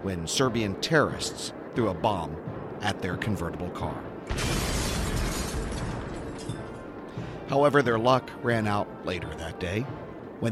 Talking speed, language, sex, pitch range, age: 110 wpm, English, male, 95-125 Hz, 40-59